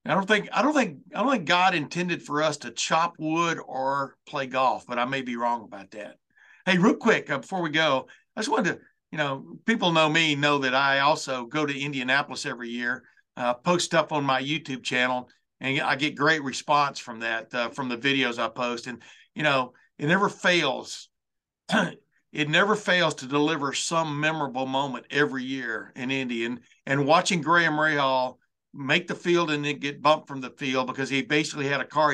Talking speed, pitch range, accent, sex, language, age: 205 wpm, 130-160 Hz, American, male, English, 60-79